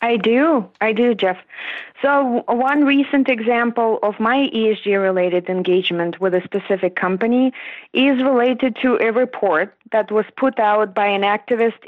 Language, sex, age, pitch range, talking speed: English, female, 30-49, 210-250 Hz, 145 wpm